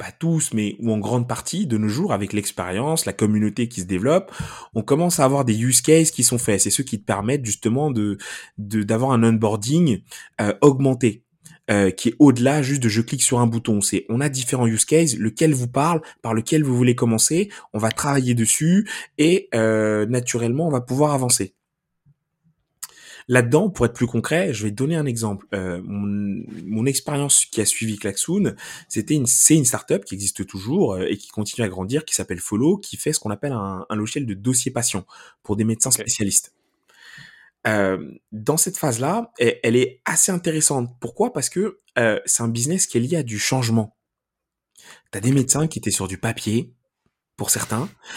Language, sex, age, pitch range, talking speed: French, male, 20-39, 105-145 Hz, 200 wpm